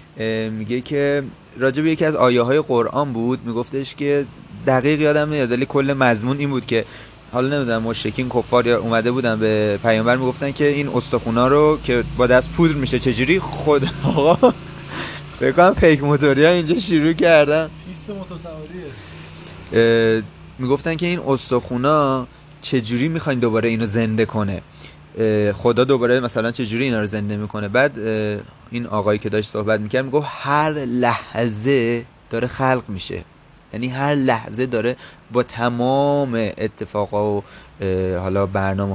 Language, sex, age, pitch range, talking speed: Persian, male, 30-49, 110-140 Hz, 140 wpm